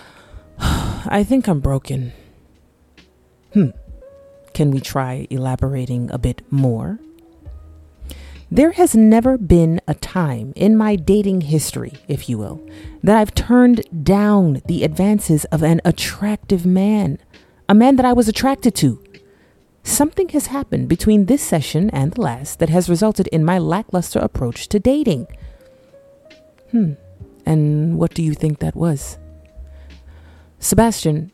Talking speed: 130 wpm